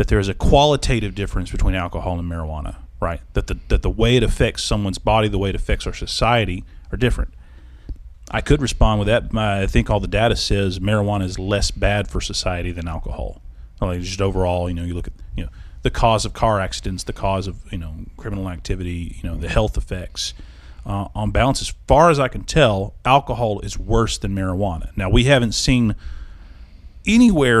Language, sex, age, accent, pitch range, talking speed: English, male, 30-49, American, 85-105 Hz, 205 wpm